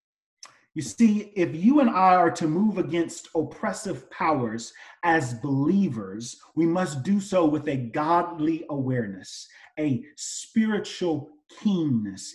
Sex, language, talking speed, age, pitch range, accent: male, English, 120 wpm, 40-59, 135-185 Hz, American